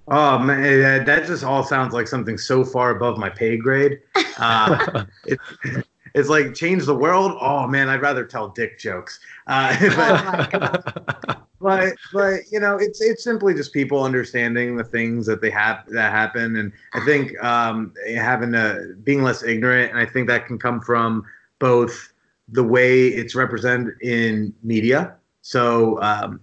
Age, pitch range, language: 30-49, 115-140 Hz, English